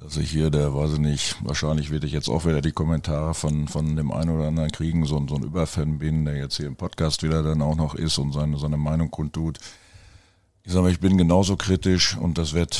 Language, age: German, 50-69